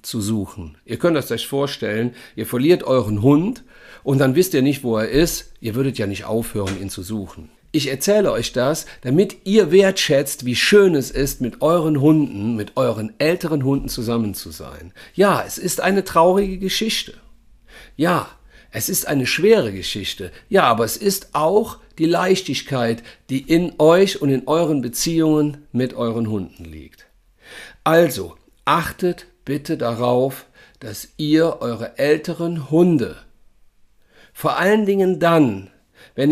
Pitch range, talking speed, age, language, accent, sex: 115-170 Hz, 150 wpm, 40-59, German, German, male